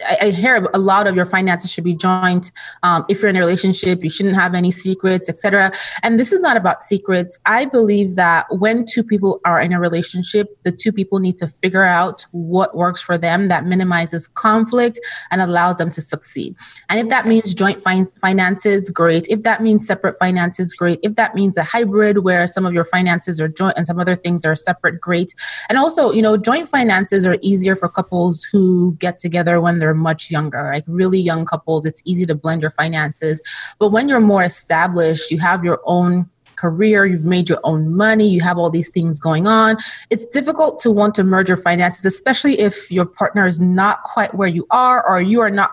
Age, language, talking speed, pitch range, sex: 20-39, English, 210 wpm, 175-210 Hz, female